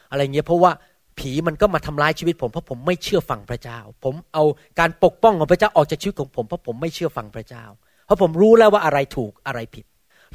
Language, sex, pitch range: Thai, male, 145-210 Hz